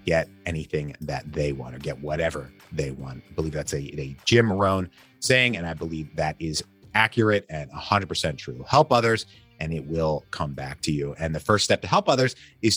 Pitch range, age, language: 80-115 Hz, 30-49, English